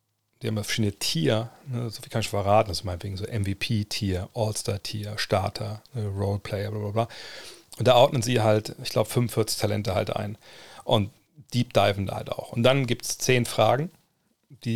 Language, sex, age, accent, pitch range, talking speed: German, male, 40-59, German, 105-120 Hz, 190 wpm